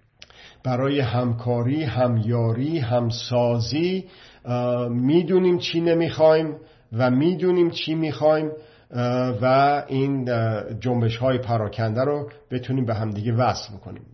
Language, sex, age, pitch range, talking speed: Persian, male, 50-69, 115-145 Hz, 105 wpm